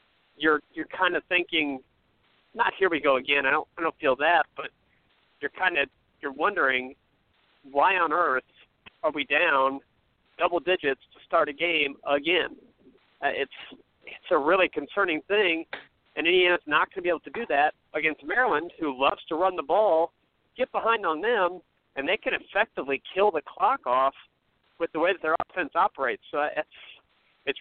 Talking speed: 180 wpm